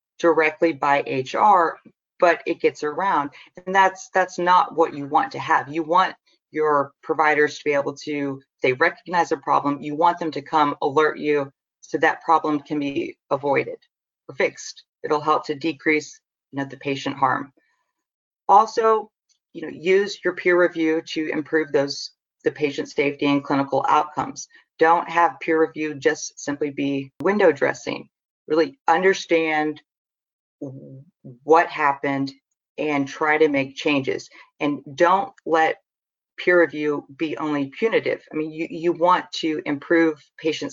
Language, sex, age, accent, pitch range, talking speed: English, female, 40-59, American, 145-175 Hz, 145 wpm